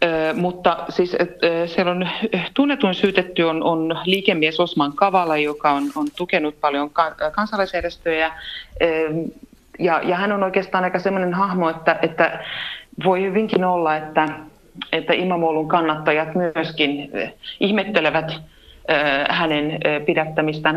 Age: 30-49